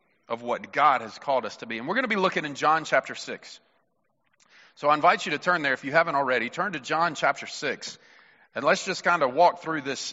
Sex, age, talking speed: male, 40-59, 250 wpm